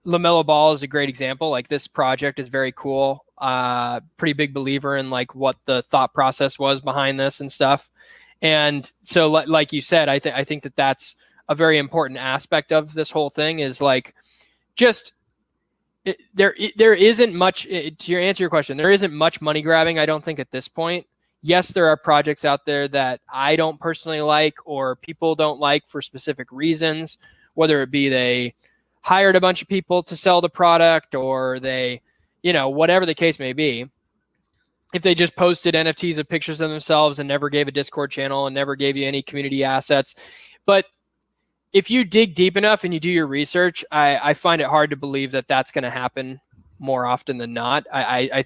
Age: 20-39